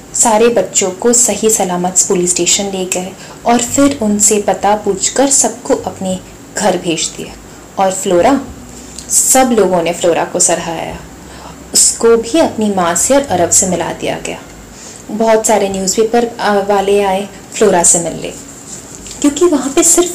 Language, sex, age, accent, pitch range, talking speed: Hindi, female, 30-49, native, 185-245 Hz, 150 wpm